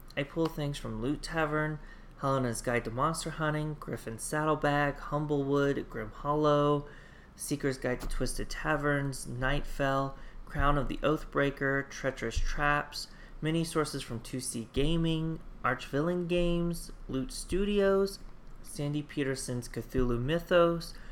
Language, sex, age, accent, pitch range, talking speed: English, male, 30-49, American, 125-155 Hz, 115 wpm